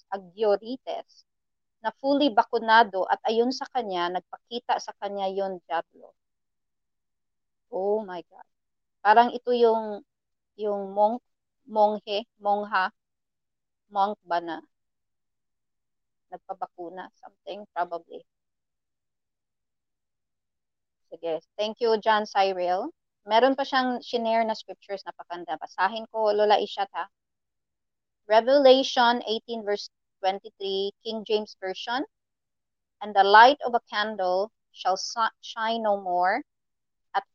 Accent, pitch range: Filipino, 185-225 Hz